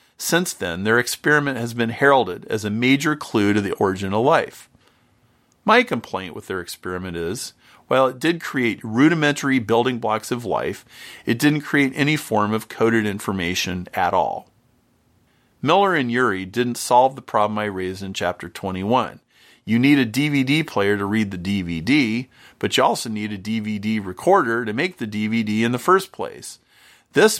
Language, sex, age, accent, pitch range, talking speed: English, male, 40-59, American, 105-140 Hz, 170 wpm